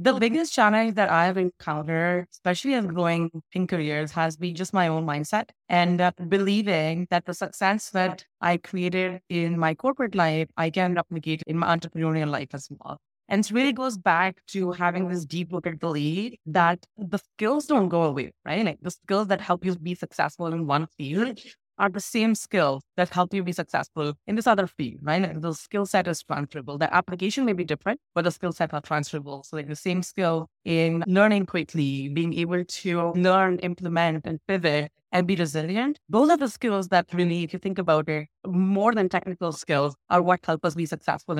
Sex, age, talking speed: female, 20-39, 200 wpm